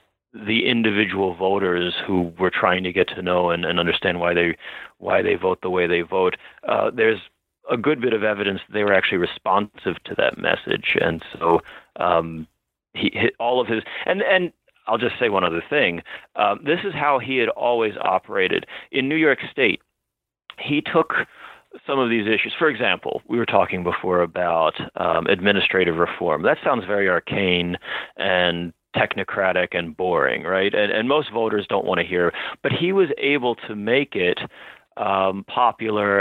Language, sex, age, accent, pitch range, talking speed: English, male, 30-49, American, 90-120 Hz, 175 wpm